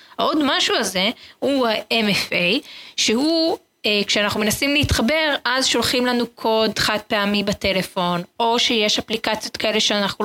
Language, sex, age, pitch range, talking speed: Hebrew, female, 20-39, 190-240 Hz, 130 wpm